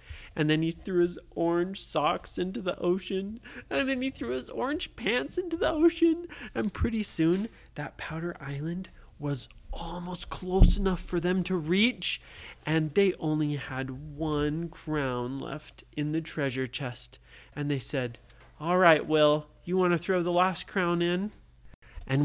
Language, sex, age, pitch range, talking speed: English, male, 30-49, 125-175 Hz, 160 wpm